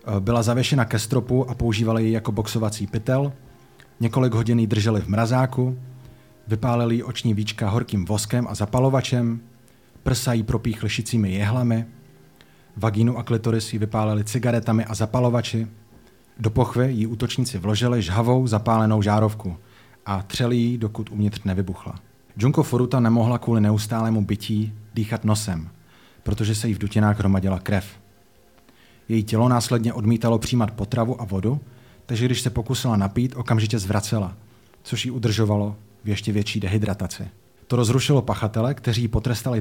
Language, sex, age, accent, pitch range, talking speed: Czech, male, 30-49, native, 105-120 Hz, 140 wpm